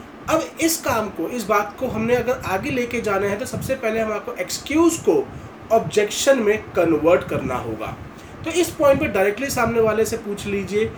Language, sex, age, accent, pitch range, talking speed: Hindi, male, 30-49, native, 195-280 Hz, 190 wpm